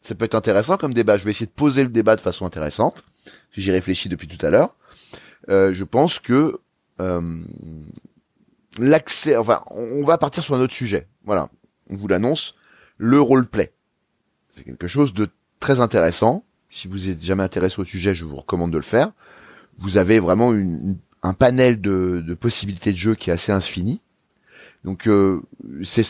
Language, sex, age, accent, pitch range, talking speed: French, male, 30-49, French, 90-110 Hz, 180 wpm